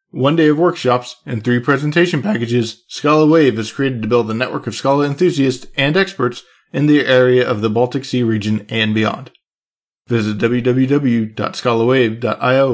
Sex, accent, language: male, American, English